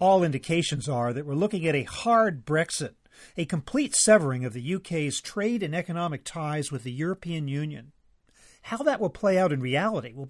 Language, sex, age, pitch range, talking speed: English, male, 40-59, 145-200 Hz, 185 wpm